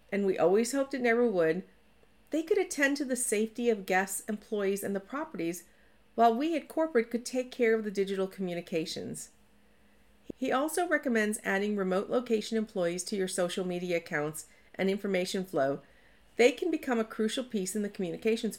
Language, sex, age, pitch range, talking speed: English, female, 50-69, 190-250 Hz, 175 wpm